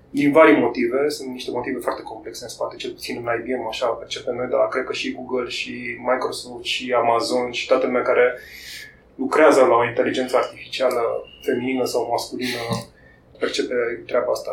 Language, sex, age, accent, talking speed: English, male, 20-39, Romanian, 170 wpm